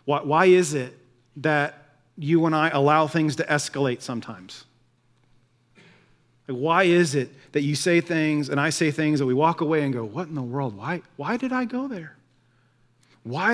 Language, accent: English, American